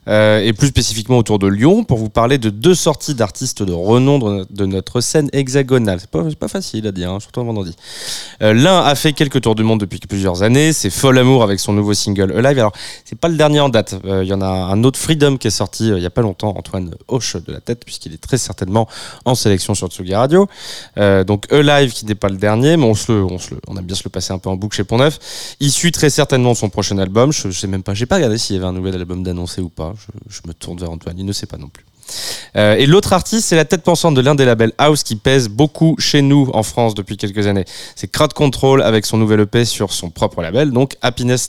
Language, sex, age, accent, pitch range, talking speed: French, male, 20-39, French, 100-135 Hz, 270 wpm